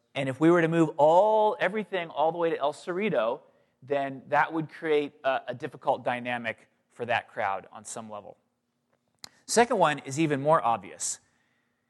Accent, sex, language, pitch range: American, male, English, 130-165 Hz